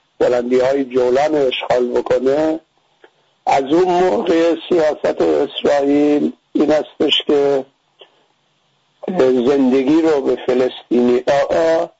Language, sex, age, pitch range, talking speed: English, male, 50-69, 130-165 Hz, 90 wpm